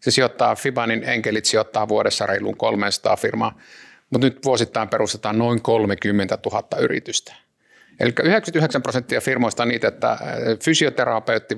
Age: 50-69